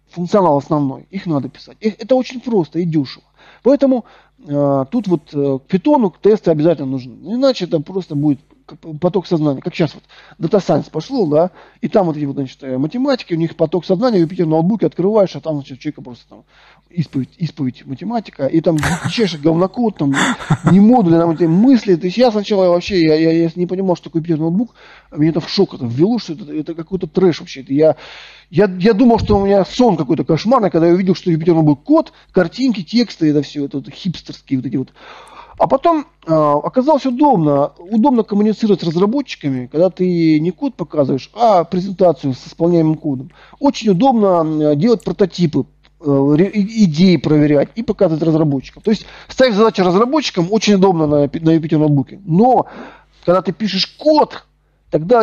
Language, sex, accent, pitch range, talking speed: Russian, male, native, 150-205 Hz, 175 wpm